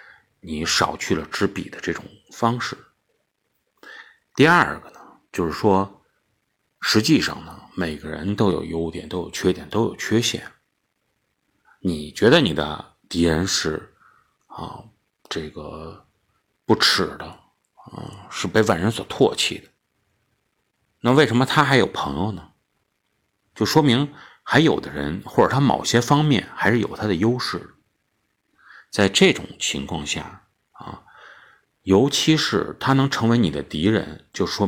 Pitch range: 80-115 Hz